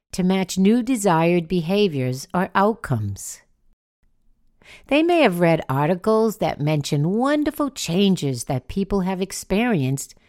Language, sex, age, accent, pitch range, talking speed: English, female, 60-79, American, 125-200 Hz, 115 wpm